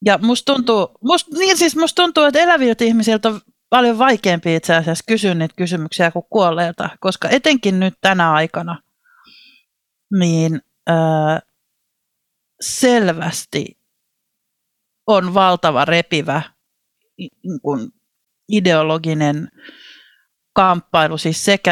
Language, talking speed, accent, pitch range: Finnish, 95 wpm, native, 165-260 Hz